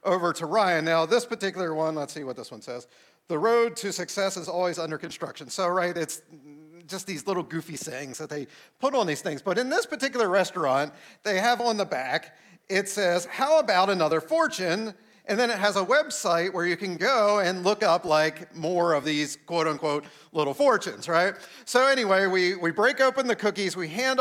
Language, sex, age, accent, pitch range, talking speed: English, male, 40-59, American, 175-245 Hz, 205 wpm